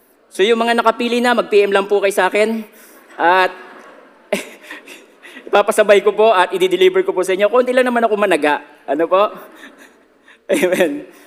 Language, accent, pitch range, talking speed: Filipino, native, 195-270 Hz, 155 wpm